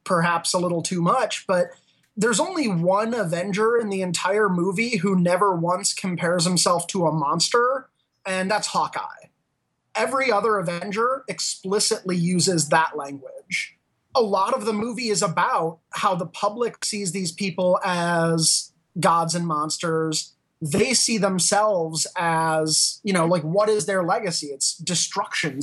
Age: 30-49